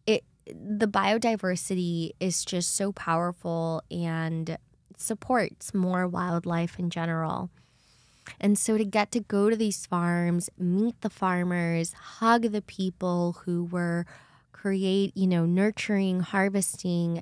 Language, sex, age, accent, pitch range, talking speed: English, female, 20-39, American, 170-200 Hz, 120 wpm